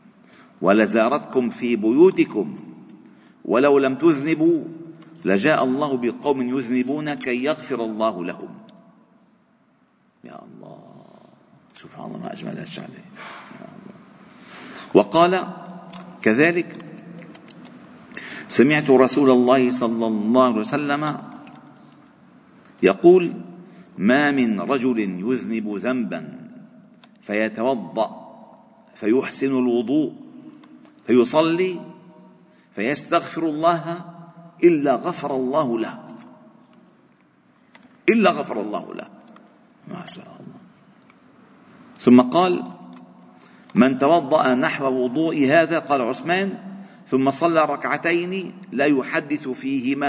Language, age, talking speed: Arabic, 50-69, 80 wpm